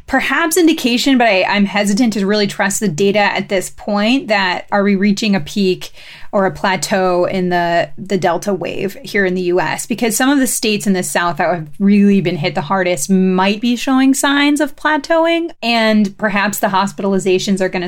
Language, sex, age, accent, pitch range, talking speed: English, female, 30-49, American, 190-260 Hz, 200 wpm